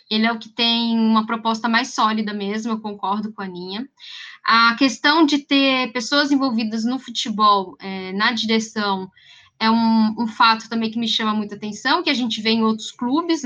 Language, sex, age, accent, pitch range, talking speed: Portuguese, female, 10-29, Brazilian, 220-290 Hz, 190 wpm